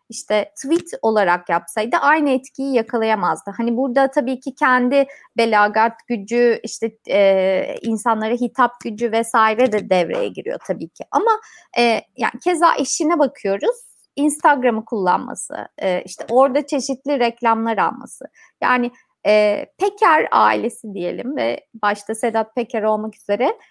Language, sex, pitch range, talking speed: Turkish, female, 225-290 Hz, 125 wpm